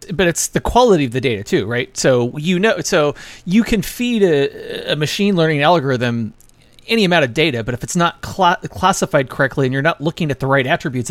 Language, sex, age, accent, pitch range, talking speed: English, male, 30-49, American, 125-170 Hz, 215 wpm